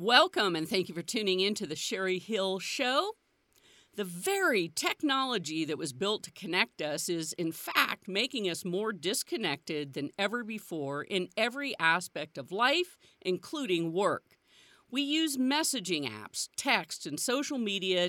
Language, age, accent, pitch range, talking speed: English, 50-69, American, 170-265 Hz, 155 wpm